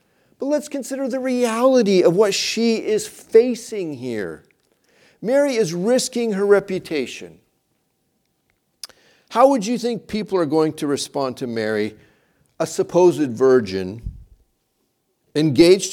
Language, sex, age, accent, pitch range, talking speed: English, male, 50-69, American, 125-200 Hz, 115 wpm